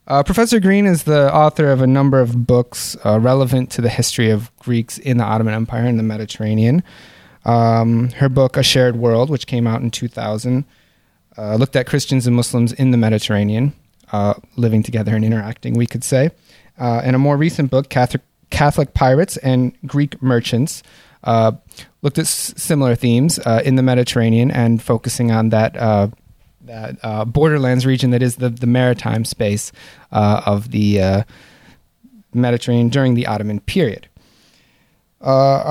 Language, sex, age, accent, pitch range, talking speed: English, male, 30-49, American, 115-145 Hz, 170 wpm